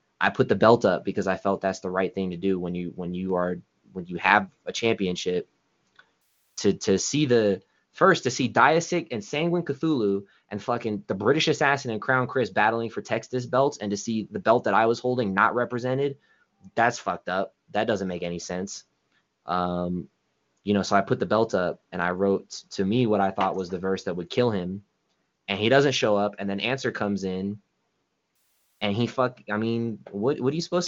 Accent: American